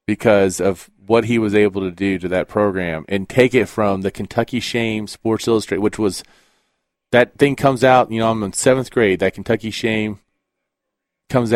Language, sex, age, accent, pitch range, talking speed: English, male, 30-49, American, 100-125 Hz, 185 wpm